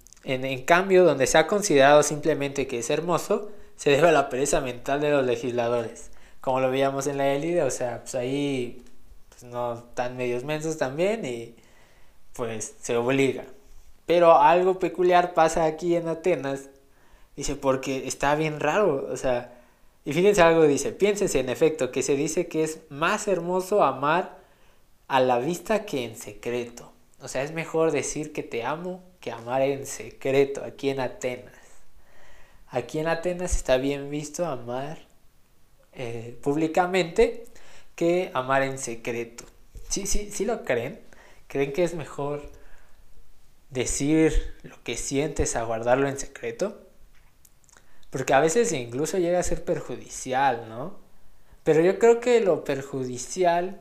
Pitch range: 125-170 Hz